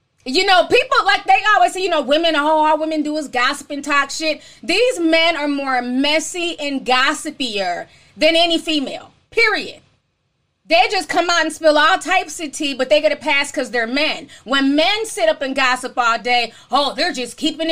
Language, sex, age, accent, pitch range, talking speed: English, female, 30-49, American, 295-370 Hz, 205 wpm